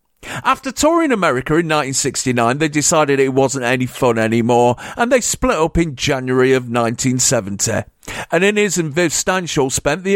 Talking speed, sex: 160 wpm, male